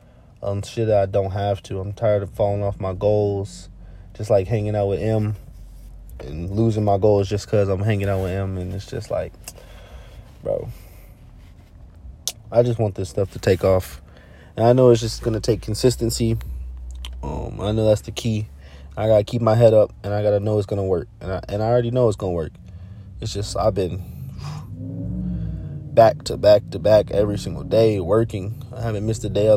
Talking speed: 215 wpm